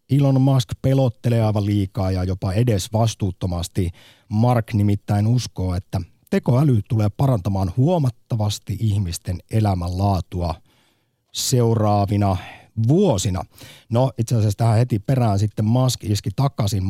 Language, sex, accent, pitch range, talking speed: Finnish, male, native, 100-130 Hz, 110 wpm